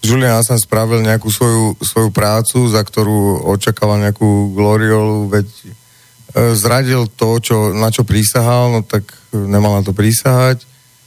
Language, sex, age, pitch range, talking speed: Slovak, male, 40-59, 105-125 Hz, 140 wpm